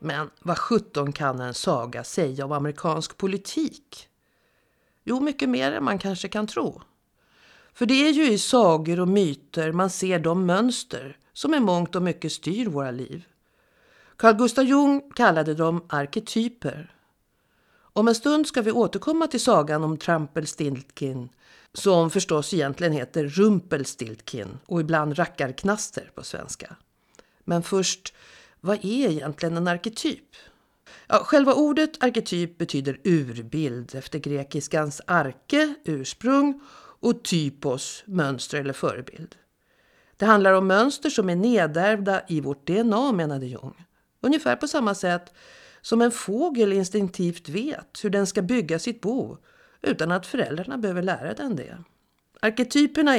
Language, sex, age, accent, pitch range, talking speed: Swedish, female, 50-69, native, 155-230 Hz, 135 wpm